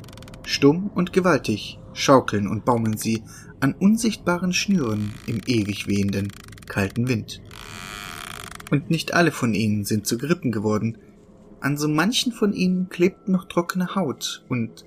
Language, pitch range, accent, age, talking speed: German, 110-175 Hz, German, 30-49, 135 wpm